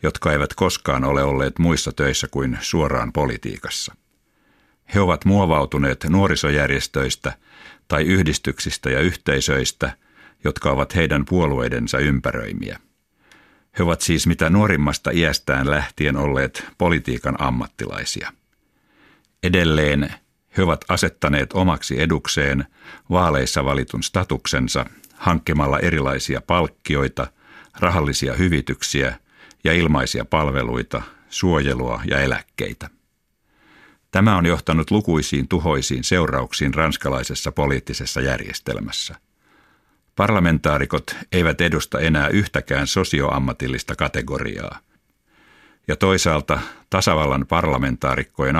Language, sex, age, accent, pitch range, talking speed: Finnish, male, 60-79, native, 70-85 Hz, 90 wpm